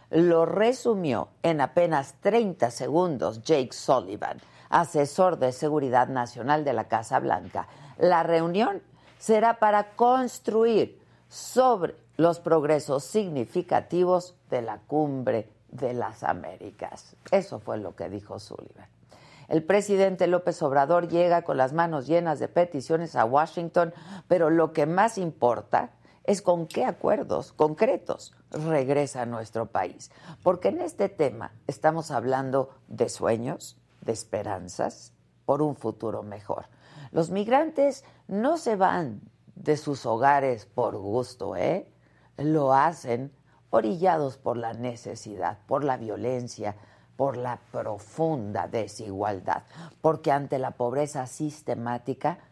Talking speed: 120 wpm